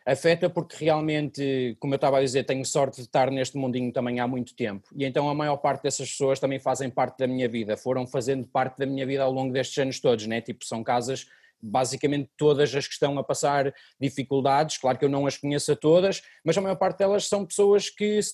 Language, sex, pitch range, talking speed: Portuguese, male, 135-170 Hz, 230 wpm